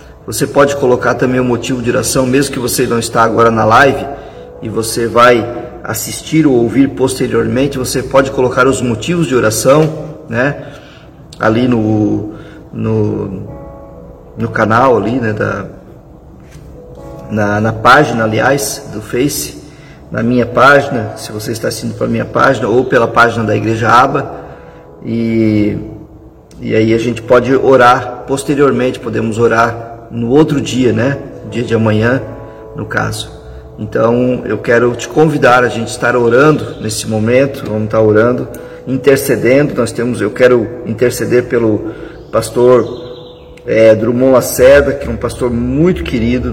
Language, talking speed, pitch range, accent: Portuguese, 145 wpm, 110-130 Hz, Brazilian